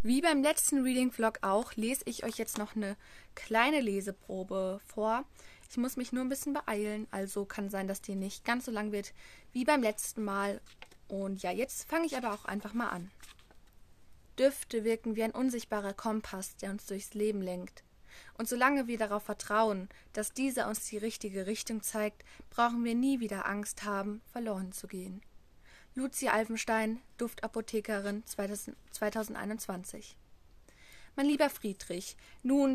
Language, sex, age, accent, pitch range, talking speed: German, female, 20-39, German, 200-235 Hz, 160 wpm